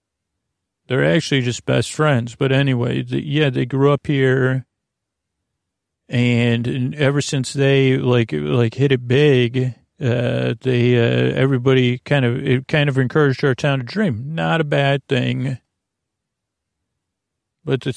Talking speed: 140 wpm